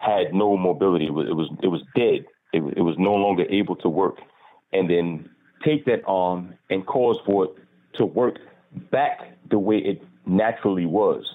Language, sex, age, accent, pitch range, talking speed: English, male, 40-59, American, 90-125 Hz, 185 wpm